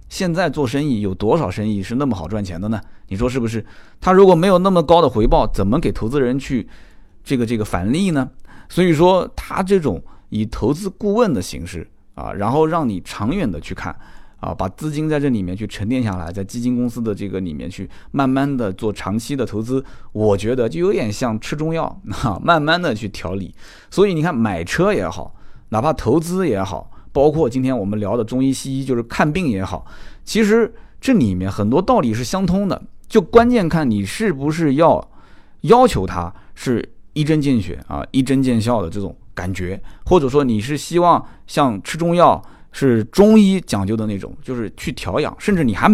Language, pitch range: Chinese, 100-160 Hz